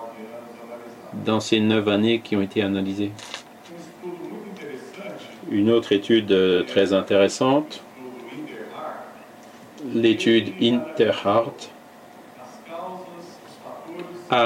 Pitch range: 110-140 Hz